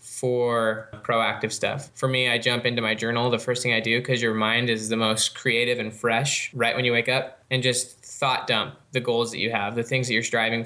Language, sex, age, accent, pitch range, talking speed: English, male, 10-29, American, 115-130 Hz, 240 wpm